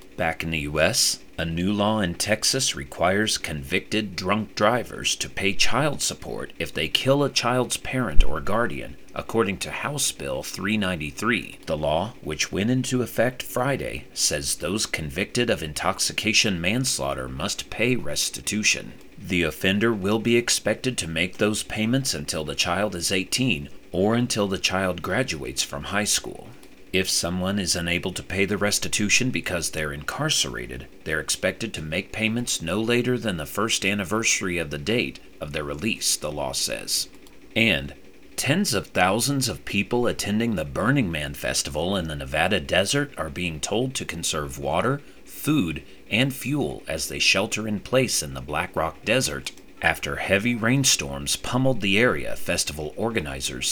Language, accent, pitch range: English, American, 85-115 Hz